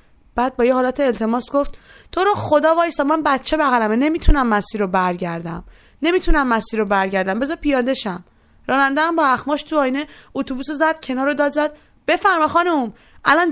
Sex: female